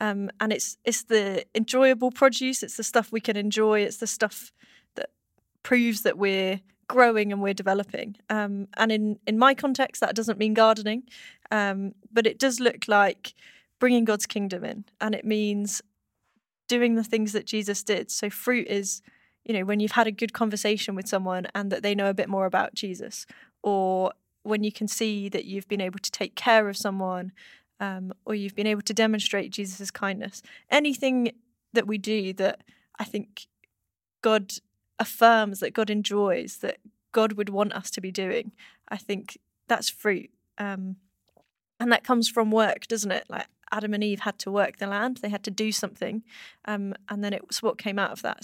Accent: British